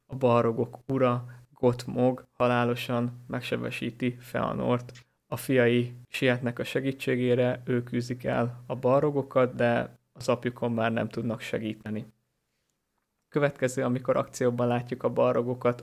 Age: 20-39